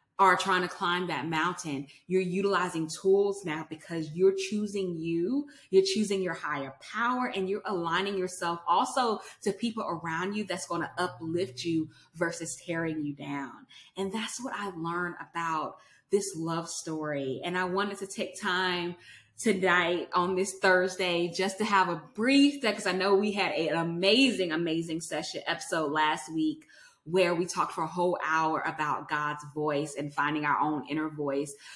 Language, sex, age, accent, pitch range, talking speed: English, female, 20-39, American, 160-195 Hz, 170 wpm